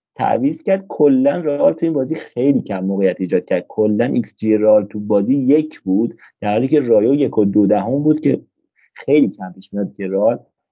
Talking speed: 185 wpm